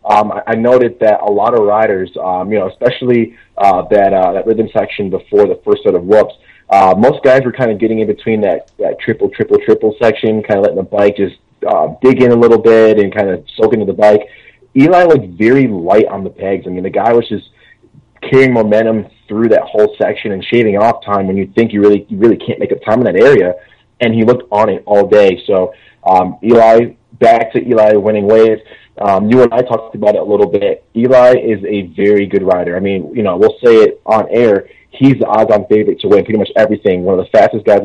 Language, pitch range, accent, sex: English, 100-120 Hz, American, male